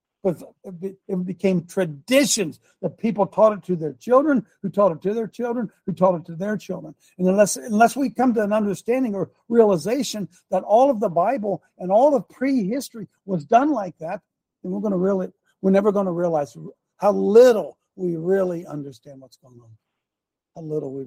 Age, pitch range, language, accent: 60-79, 175-220 Hz, English, American